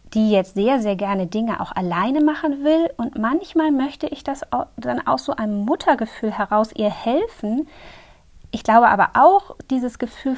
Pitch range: 210-275 Hz